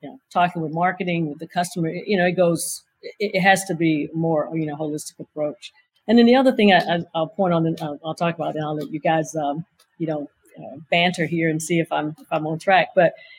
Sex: female